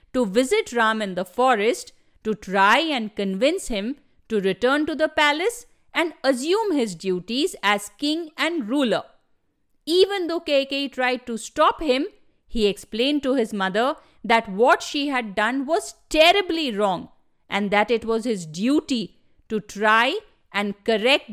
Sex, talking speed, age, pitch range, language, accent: female, 150 wpm, 50-69, 210-310 Hz, English, Indian